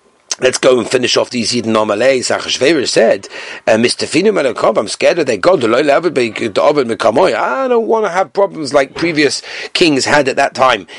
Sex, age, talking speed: male, 40-59, 170 wpm